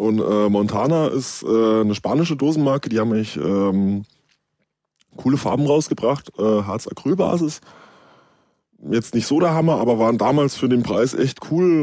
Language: German